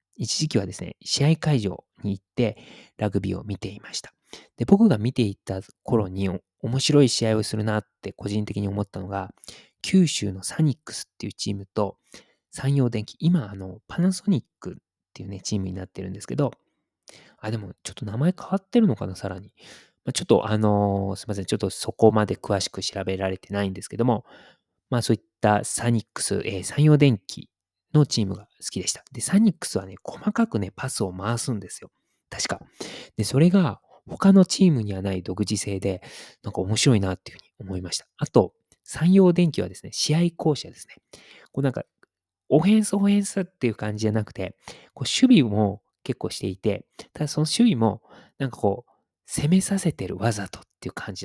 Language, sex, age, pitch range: Japanese, male, 20-39, 100-150 Hz